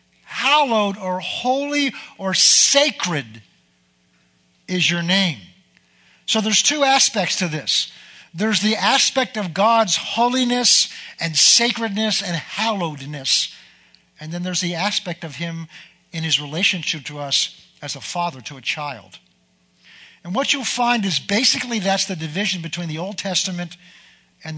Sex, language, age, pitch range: male, English, 50-69, 165-205 Hz